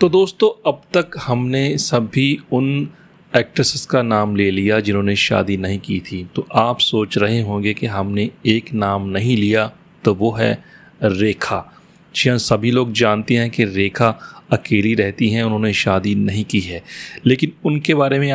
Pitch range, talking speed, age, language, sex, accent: 105-130 Hz, 165 wpm, 30-49, Hindi, male, native